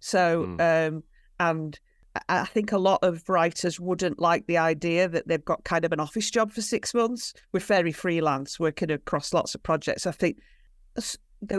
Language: English